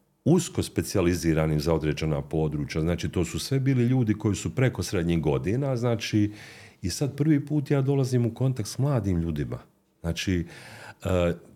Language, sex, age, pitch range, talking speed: Croatian, male, 40-59, 80-105 Hz, 150 wpm